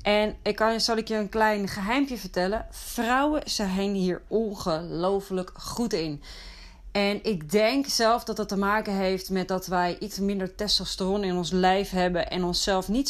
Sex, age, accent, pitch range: female, 30-49, Dutch, 185-220 Hz